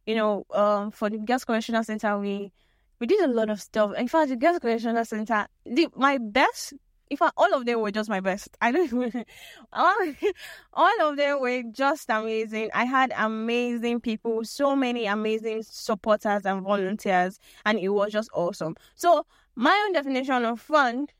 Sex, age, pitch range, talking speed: female, 10-29, 205-250 Hz, 175 wpm